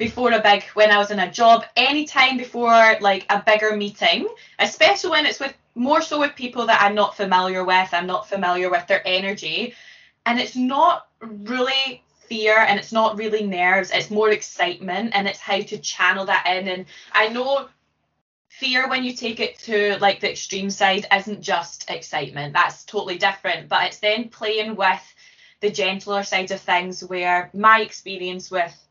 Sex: female